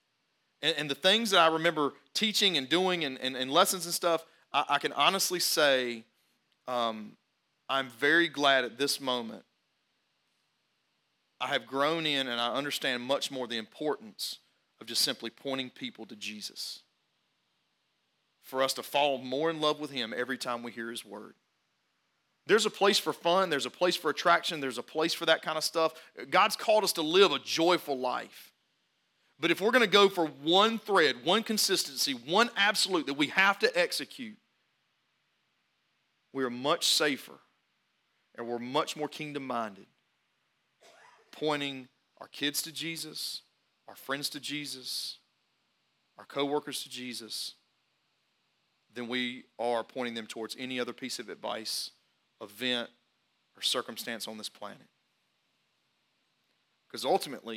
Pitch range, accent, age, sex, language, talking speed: 125-170 Hz, American, 40-59, male, English, 150 wpm